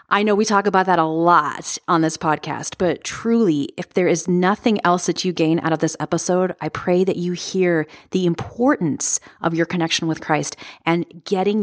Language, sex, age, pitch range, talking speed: English, female, 30-49, 160-200 Hz, 200 wpm